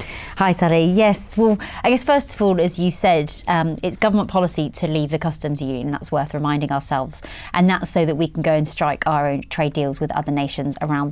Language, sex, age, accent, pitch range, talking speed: English, female, 30-49, British, 155-190 Hz, 225 wpm